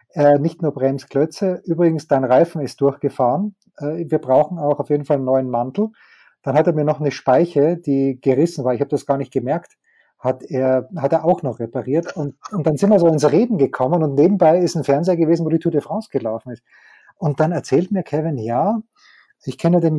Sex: male